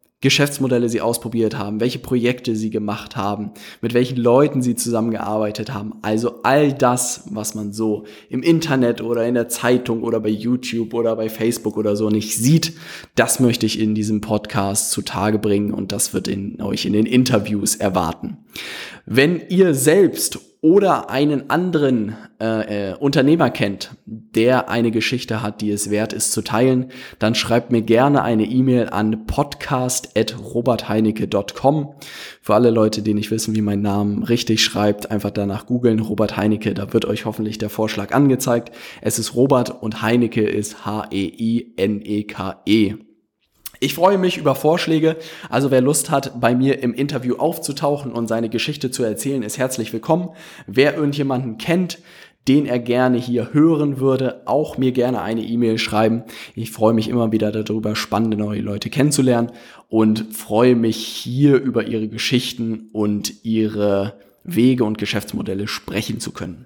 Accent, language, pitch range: German, German, 105-130 Hz